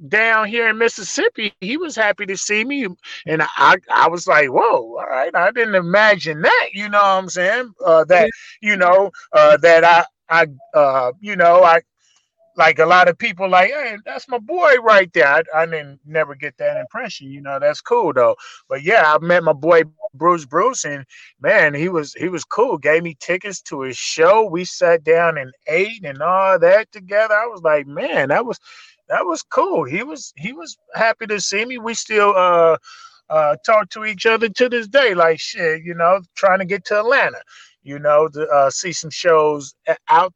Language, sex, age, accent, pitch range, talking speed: English, male, 20-39, American, 160-225 Hz, 205 wpm